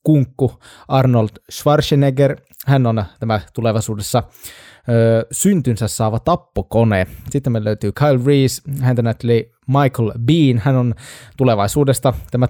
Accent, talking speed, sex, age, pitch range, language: native, 115 wpm, male, 20-39, 110-140 Hz, Finnish